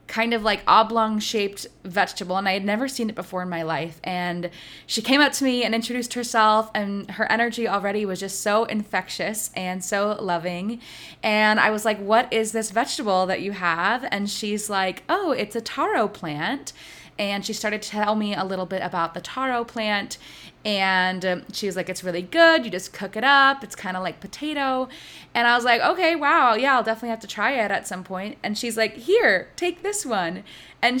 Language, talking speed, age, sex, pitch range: English, 215 wpm, 20-39, female, 185-235 Hz